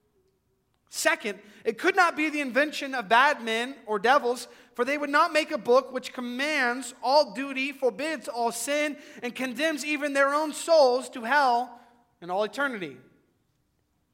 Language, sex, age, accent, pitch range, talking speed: English, male, 30-49, American, 165-240 Hz, 155 wpm